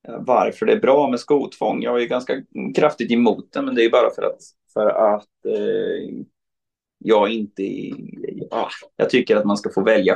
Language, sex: Swedish, male